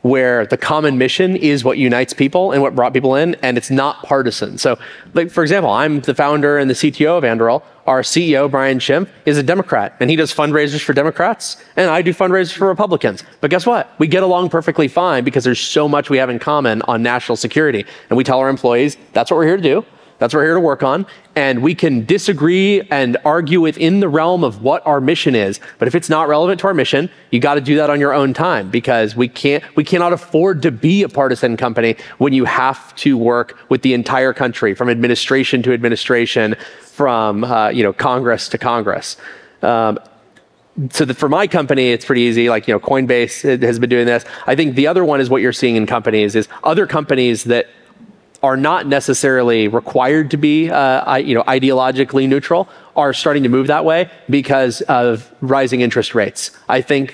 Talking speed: 215 wpm